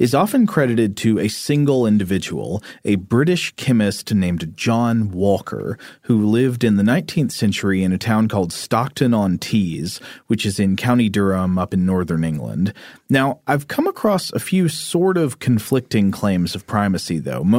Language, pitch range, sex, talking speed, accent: English, 100-135 Hz, male, 155 wpm, American